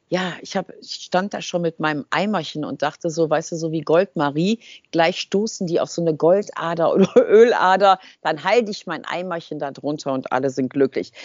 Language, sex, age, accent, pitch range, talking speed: German, female, 50-69, German, 155-205 Hz, 195 wpm